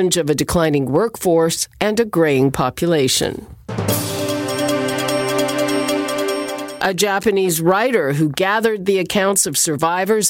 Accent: American